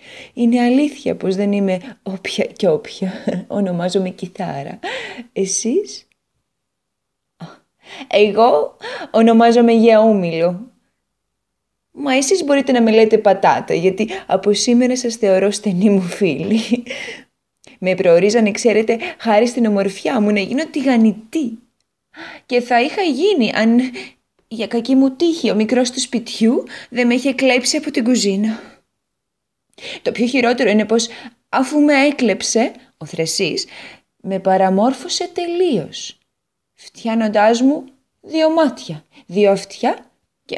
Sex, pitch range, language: female, 200-255 Hz, Greek